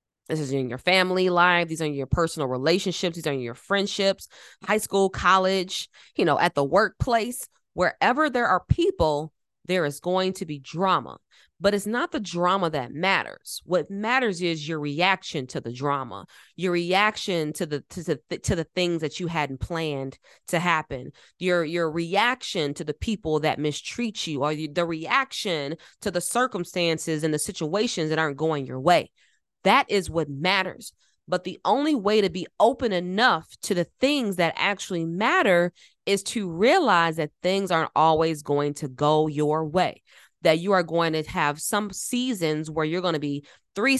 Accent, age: American, 20-39